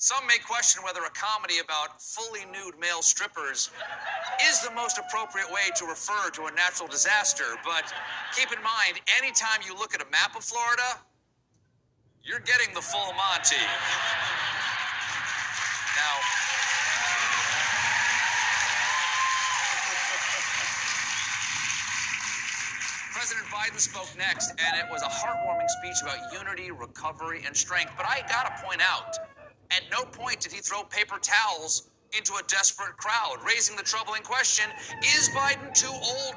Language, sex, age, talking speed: English, male, 50-69, 130 wpm